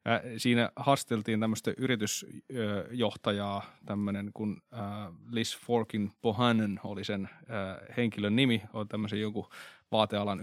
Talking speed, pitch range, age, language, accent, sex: 100 wpm, 105-120 Hz, 20-39, Finnish, native, male